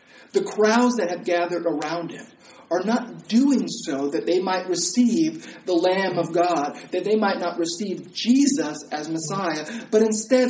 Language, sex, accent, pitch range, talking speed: English, male, American, 185-245 Hz, 165 wpm